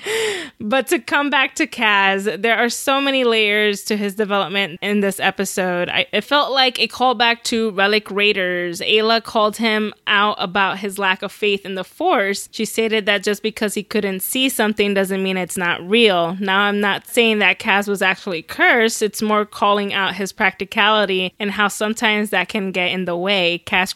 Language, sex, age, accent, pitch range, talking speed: English, female, 20-39, American, 195-225 Hz, 190 wpm